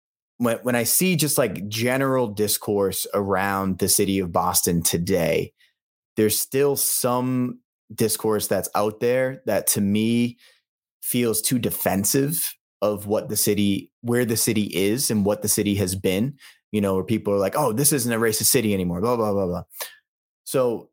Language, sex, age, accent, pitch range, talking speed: English, male, 20-39, American, 95-115 Hz, 170 wpm